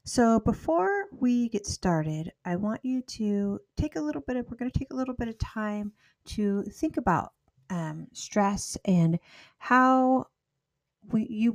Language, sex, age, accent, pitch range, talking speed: English, female, 40-59, American, 160-210 Hz, 160 wpm